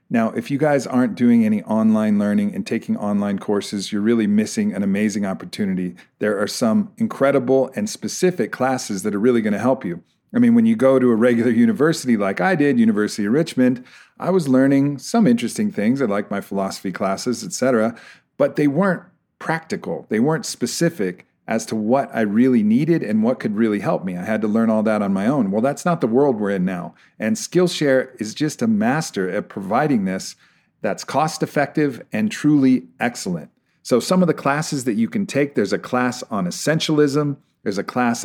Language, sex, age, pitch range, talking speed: English, male, 40-59, 115-190 Hz, 200 wpm